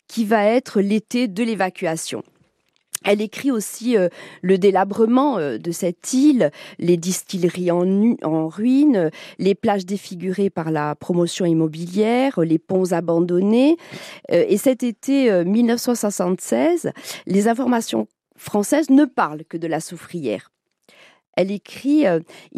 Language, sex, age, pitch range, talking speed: French, female, 40-59, 170-225 Hz, 135 wpm